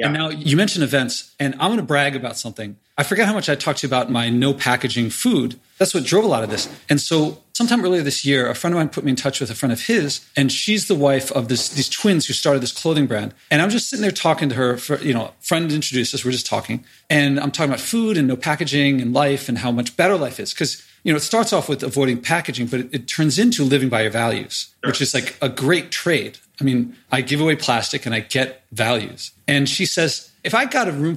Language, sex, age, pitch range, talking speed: English, male, 40-59, 130-165 Hz, 270 wpm